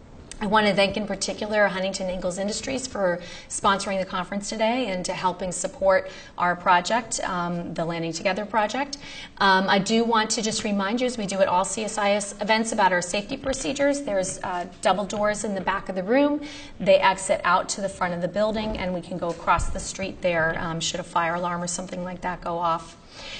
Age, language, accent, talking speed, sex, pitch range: 30-49, English, American, 210 wpm, female, 180-210 Hz